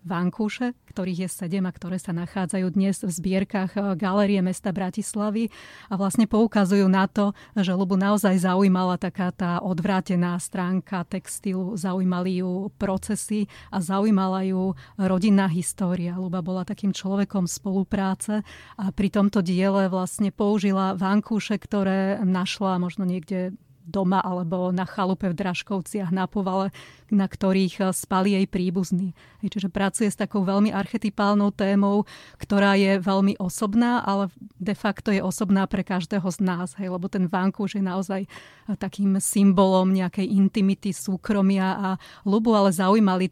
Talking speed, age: 140 wpm, 30-49